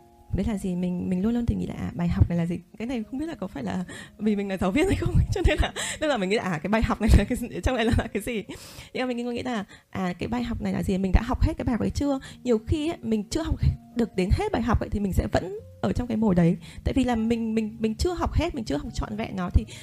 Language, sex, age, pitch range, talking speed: Vietnamese, female, 20-39, 190-250 Hz, 340 wpm